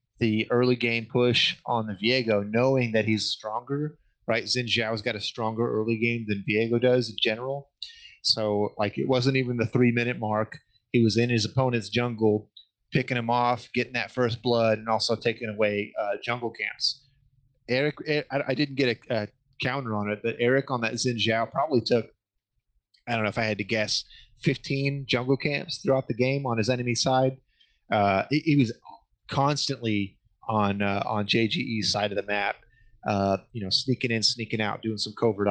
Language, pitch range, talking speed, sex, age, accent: English, 110-125 Hz, 190 wpm, male, 30-49, American